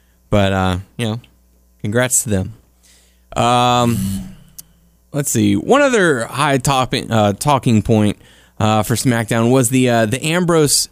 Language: English